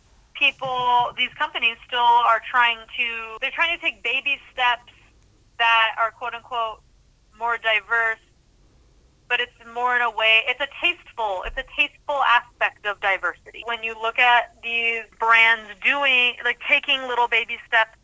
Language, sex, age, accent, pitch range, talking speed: English, female, 20-39, American, 215-245 Hz, 150 wpm